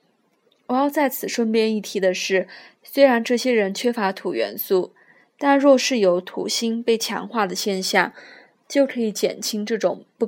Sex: female